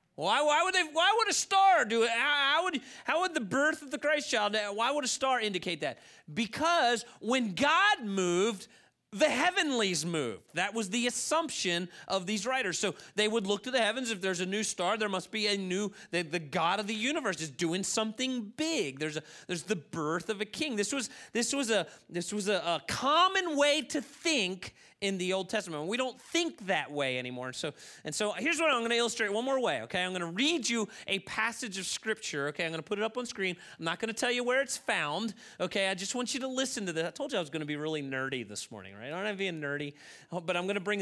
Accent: American